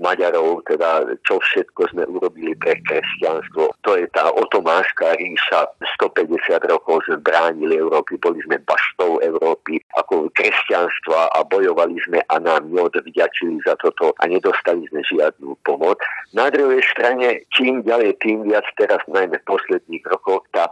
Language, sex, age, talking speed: Slovak, male, 50-69, 145 wpm